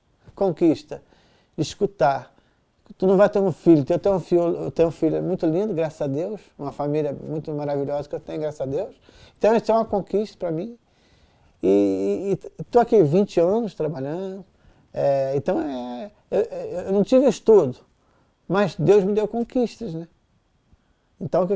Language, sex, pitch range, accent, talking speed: Portuguese, male, 155-215 Hz, Brazilian, 165 wpm